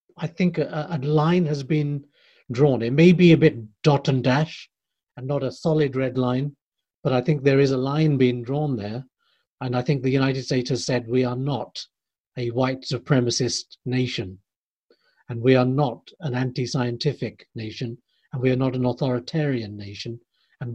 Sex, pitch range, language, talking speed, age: male, 125-155 Hz, English, 180 wpm, 50-69